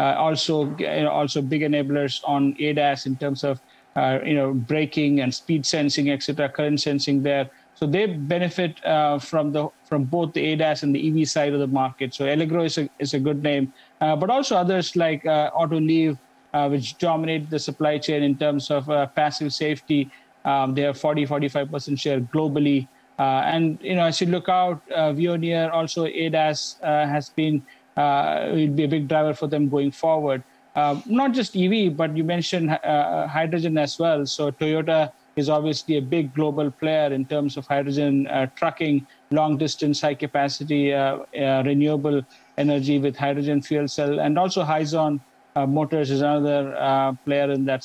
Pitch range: 140-155 Hz